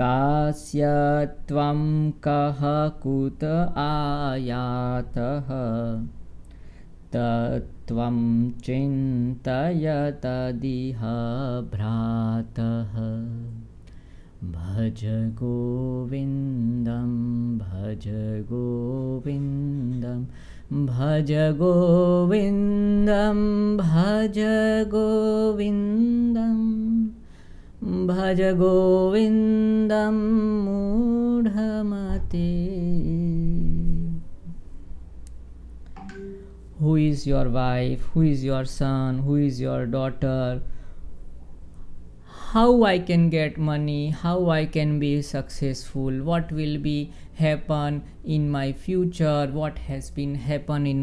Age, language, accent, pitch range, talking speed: 20-39, Hindi, native, 120-170 Hz, 60 wpm